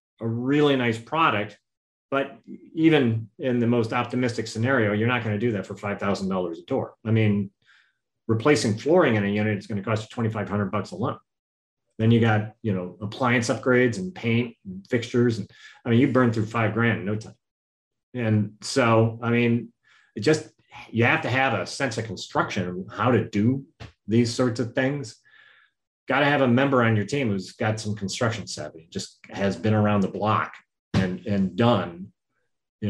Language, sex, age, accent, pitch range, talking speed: English, male, 30-49, American, 105-125 Hz, 180 wpm